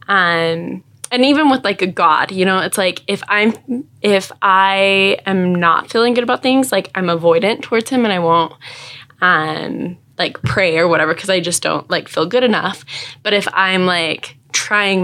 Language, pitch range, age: English, 170-210 Hz, 20-39